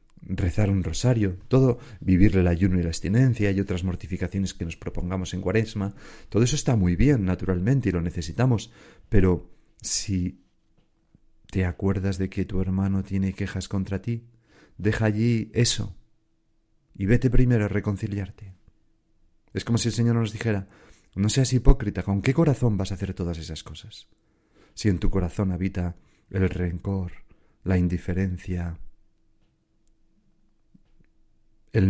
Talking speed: 145 wpm